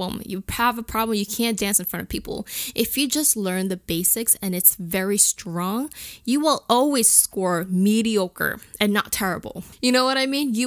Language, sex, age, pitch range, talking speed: English, female, 10-29, 195-245 Hz, 195 wpm